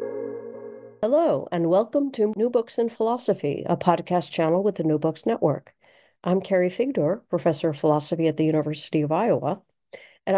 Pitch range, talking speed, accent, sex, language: 160-220 Hz, 160 wpm, American, female, English